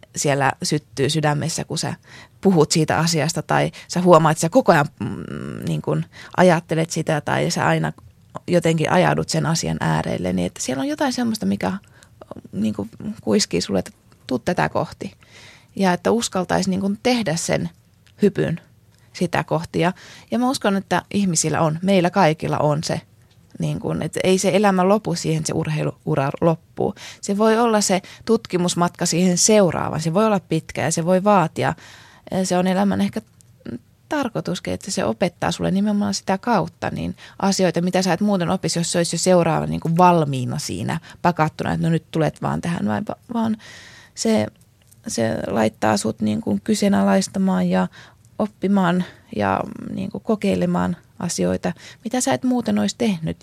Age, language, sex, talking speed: 20-39, Finnish, female, 155 wpm